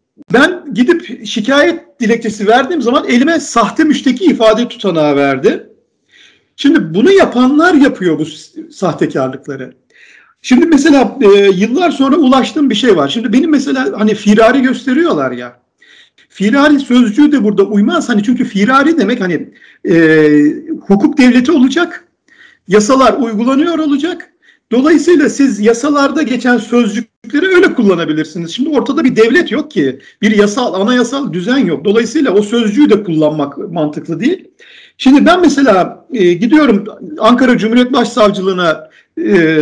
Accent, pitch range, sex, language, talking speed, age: native, 210-300 Hz, male, Turkish, 130 wpm, 50-69